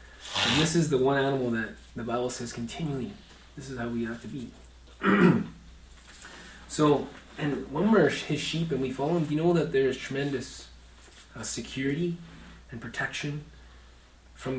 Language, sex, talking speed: English, male, 160 wpm